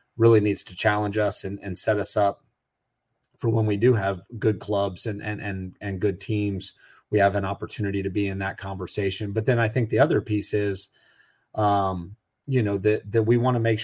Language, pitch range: English, 100-110 Hz